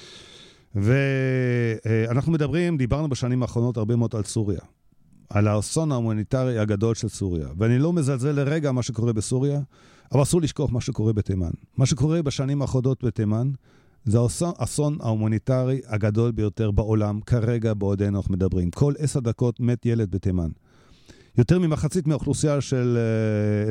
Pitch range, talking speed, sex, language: 110-135 Hz, 135 wpm, male, Hebrew